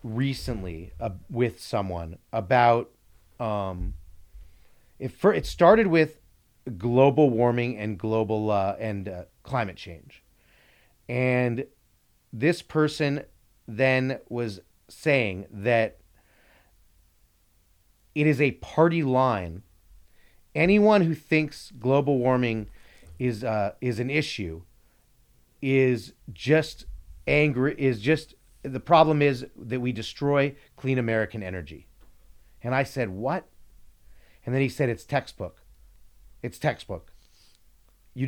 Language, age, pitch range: English, 40-59, 95-140 Hz